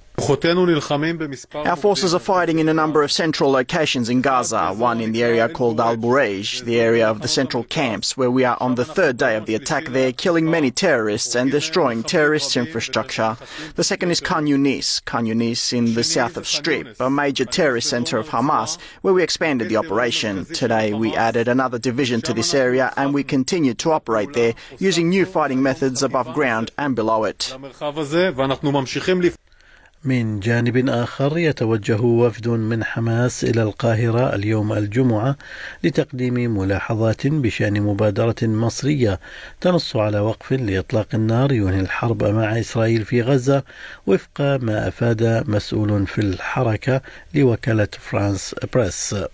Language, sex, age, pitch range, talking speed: Arabic, male, 30-49, 115-140 Hz, 150 wpm